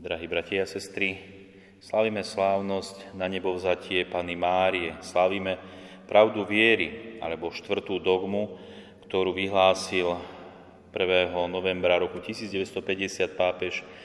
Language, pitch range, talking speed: Slovak, 90-100 Hz, 100 wpm